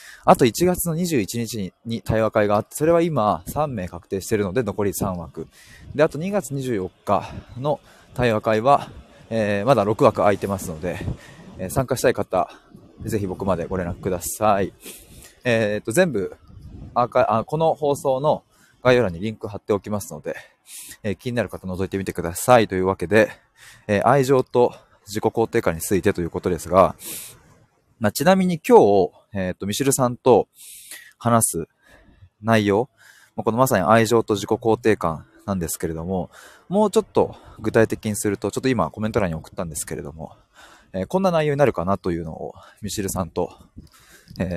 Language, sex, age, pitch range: Japanese, male, 20-39, 95-125 Hz